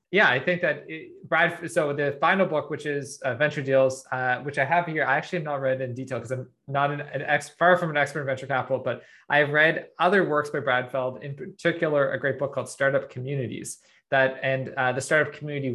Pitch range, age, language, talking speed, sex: 130-155 Hz, 20-39, English, 235 wpm, male